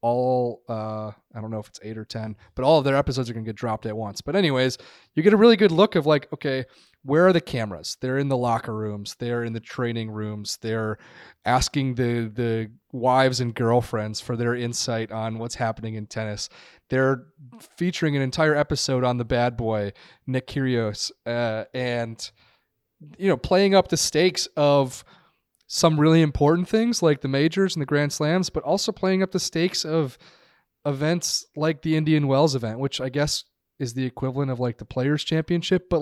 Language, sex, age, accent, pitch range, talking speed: English, male, 30-49, American, 115-150 Hz, 195 wpm